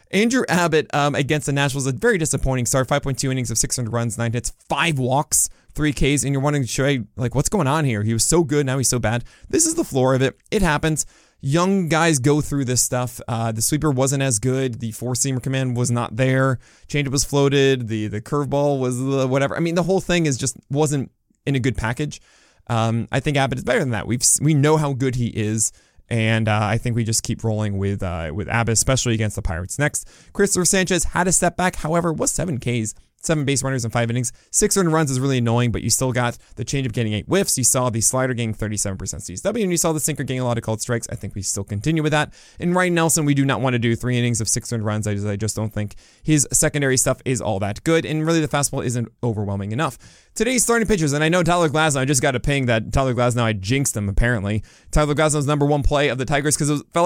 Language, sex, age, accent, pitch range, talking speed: English, male, 20-39, American, 115-150 Hz, 250 wpm